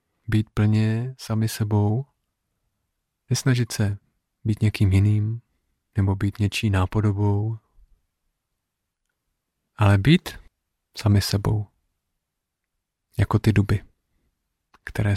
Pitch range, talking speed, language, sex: 100-110 Hz, 85 wpm, Czech, male